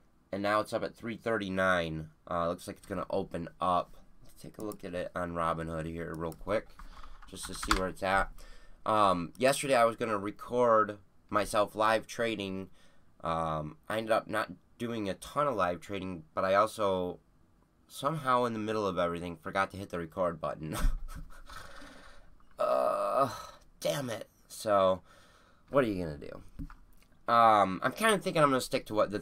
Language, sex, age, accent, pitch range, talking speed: English, male, 20-39, American, 90-115 Hz, 175 wpm